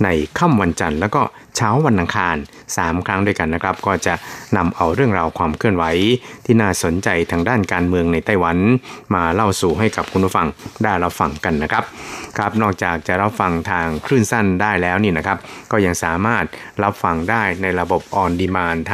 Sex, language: male, Thai